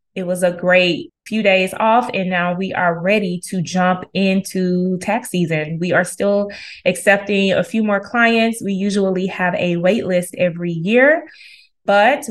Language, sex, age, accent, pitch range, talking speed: English, female, 20-39, American, 180-210 Hz, 165 wpm